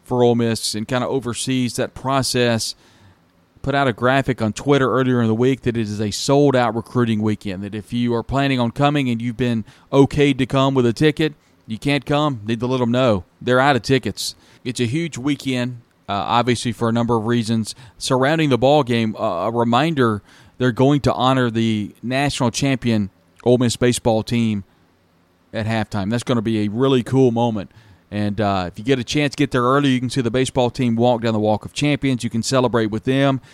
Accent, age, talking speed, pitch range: American, 40-59, 215 wpm, 110-130 Hz